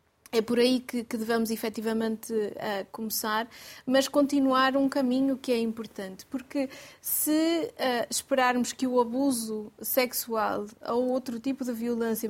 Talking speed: 125 wpm